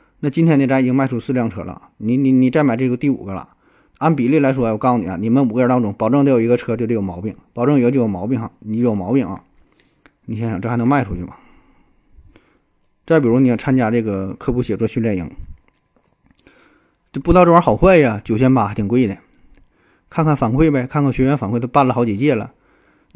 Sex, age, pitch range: male, 20-39, 110-135 Hz